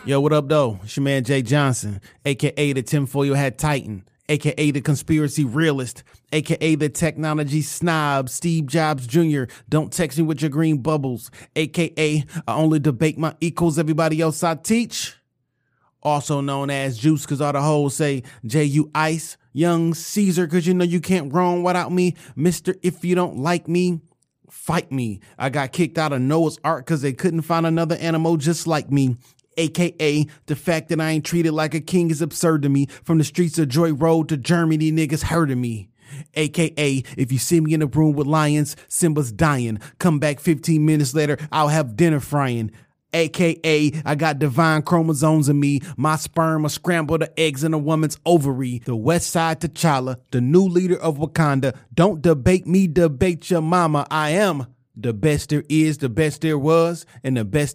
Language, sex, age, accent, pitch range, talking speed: English, male, 30-49, American, 140-165 Hz, 185 wpm